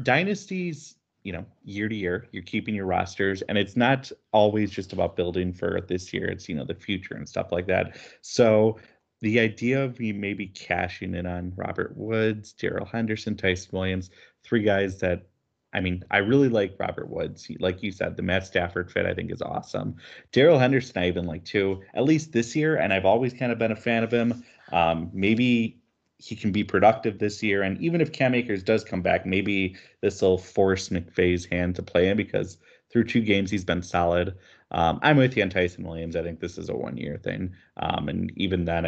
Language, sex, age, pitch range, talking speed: English, male, 30-49, 90-115 Hz, 210 wpm